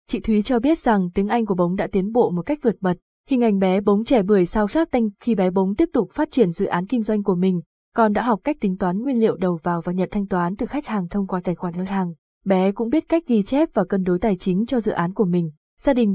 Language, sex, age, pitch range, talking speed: Vietnamese, female, 20-39, 185-235 Hz, 295 wpm